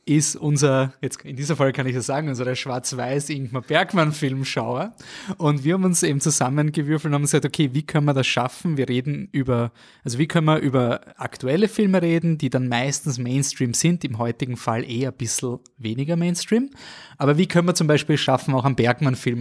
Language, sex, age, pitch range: German, male, 20-39, 120-150 Hz